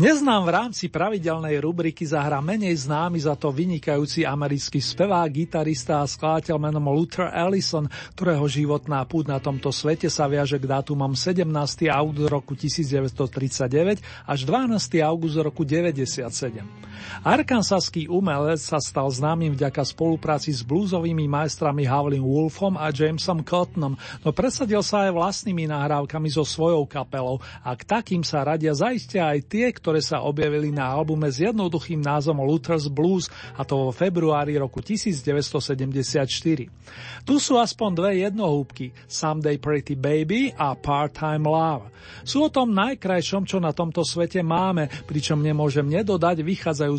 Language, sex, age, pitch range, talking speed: Slovak, male, 40-59, 145-175 Hz, 140 wpm